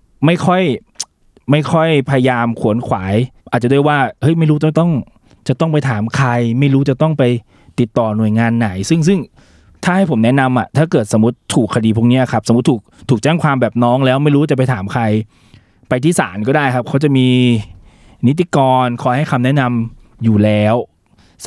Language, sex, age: Thai, male, 20-39